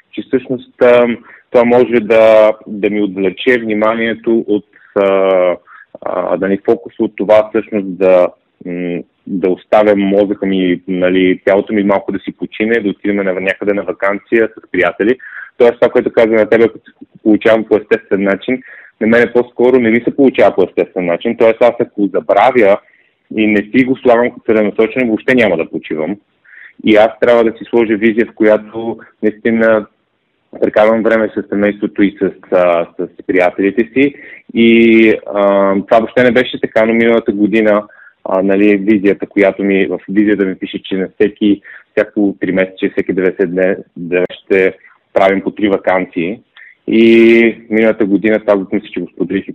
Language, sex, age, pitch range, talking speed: Bulgarian, male, 30-49, 95-115 Hz, 165 wpm